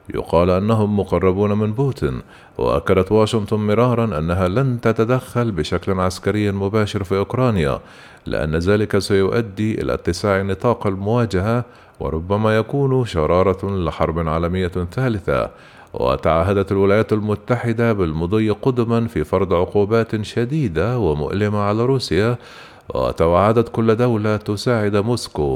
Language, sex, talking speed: Arabic, male, 110 wpm